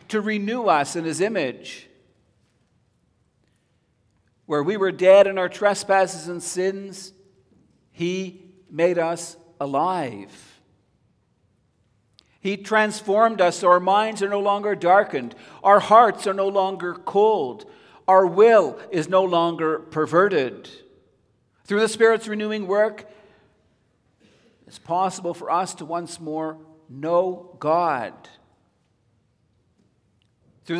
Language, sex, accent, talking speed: English, male, American, 110 wpm